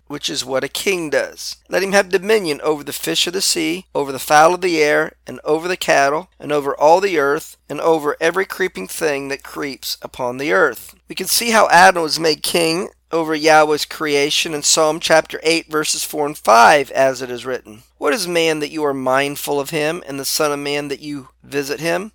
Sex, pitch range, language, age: male, 140-175 Hz, English, 40-59